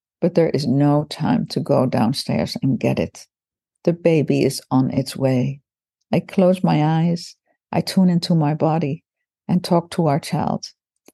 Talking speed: 165 wpm